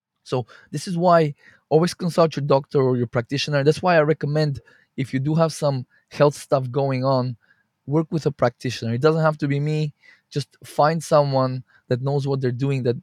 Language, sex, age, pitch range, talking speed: English, male, 20-39, 120-150 Hz, 200 wpm